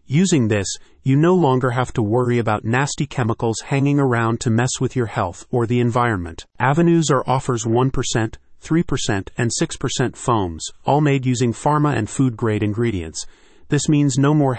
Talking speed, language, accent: 165 wpm, English, American